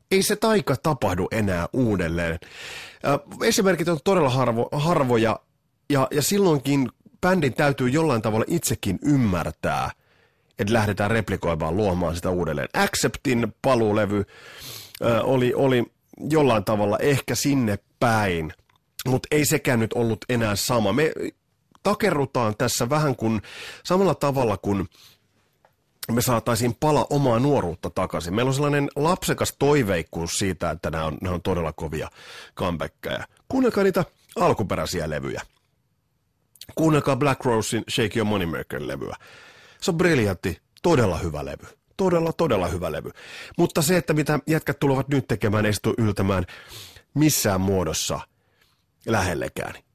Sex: male